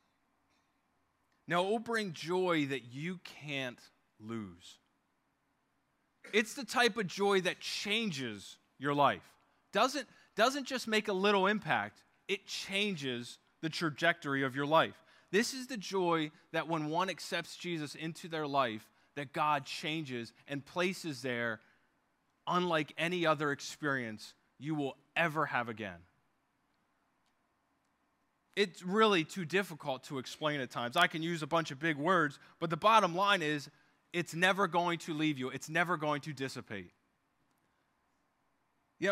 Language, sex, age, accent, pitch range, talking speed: English, male, 20-39, American, 145-195 Hz, 140 wpm